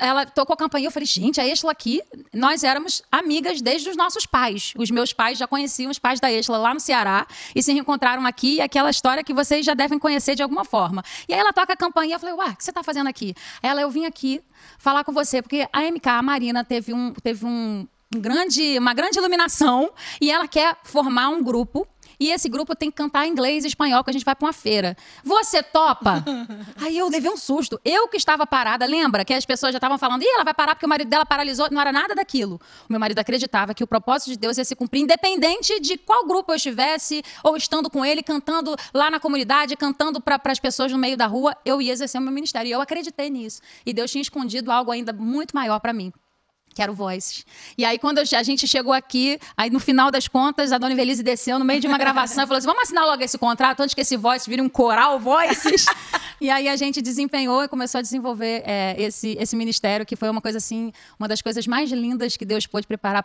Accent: Brazilian